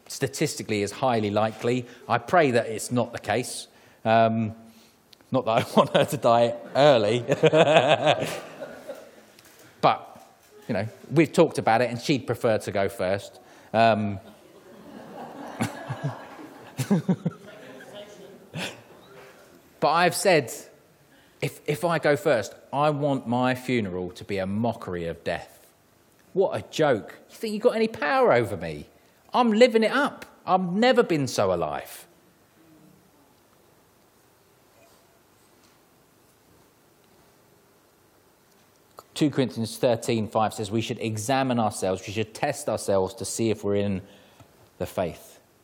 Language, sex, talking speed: English, male, 120 wpm